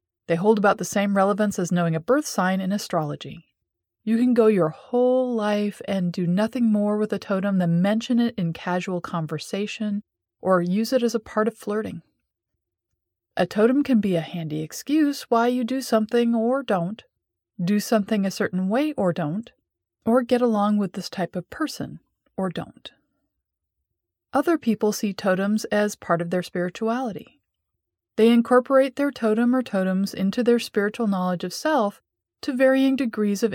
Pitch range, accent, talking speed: 175-230 Hz, American, 170 wpm